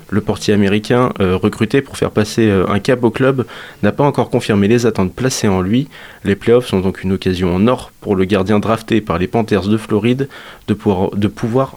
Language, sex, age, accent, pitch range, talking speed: French, male, 20-39, French, 100-120 Hz, 215 wpm